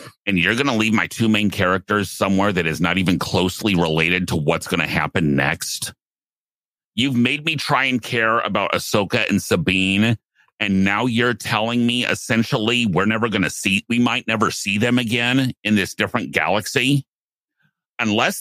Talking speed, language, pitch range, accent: 175 wpm, English, 100-125 Hz, American